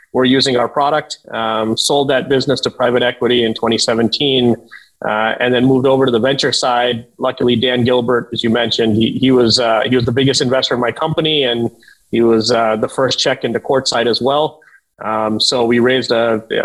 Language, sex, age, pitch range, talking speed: English, male, 30-49, 120-145 Hz, 205 wpm